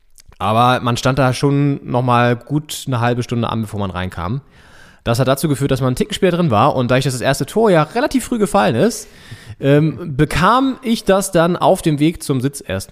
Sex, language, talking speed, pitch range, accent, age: male, German, 220 wpm, 110-140 Hz, German, 20-39